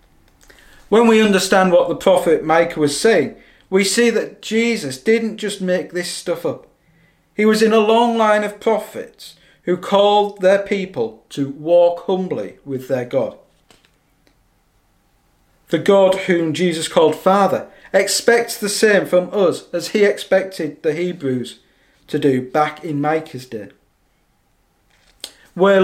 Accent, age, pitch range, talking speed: British, 40-59, 160-210 Hz, 140 wpm